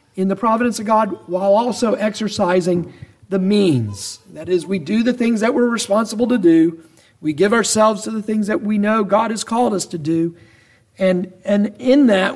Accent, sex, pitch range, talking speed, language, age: American, male, 145-200 Hz, 195 wpm, English, 50-69